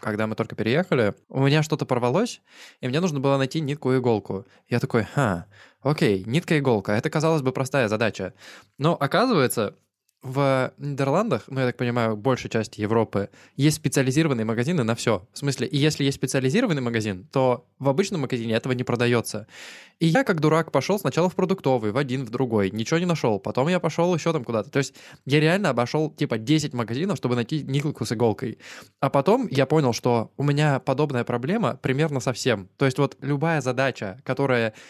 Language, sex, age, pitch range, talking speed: Russian, male, 20-39, 115-150 Hz, 190 wpm